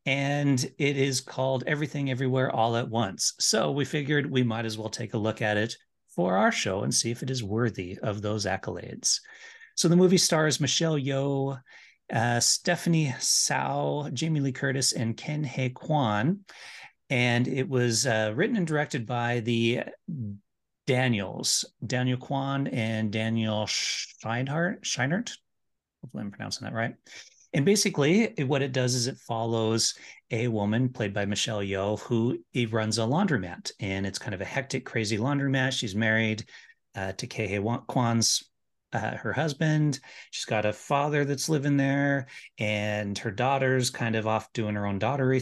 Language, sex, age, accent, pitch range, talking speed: English, male, 40-59, American, 110-140 Hz, 160 wpm